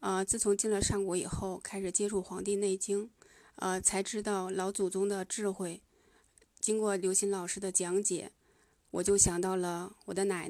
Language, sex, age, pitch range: Chinese, female, 20-39, 180-205 Hz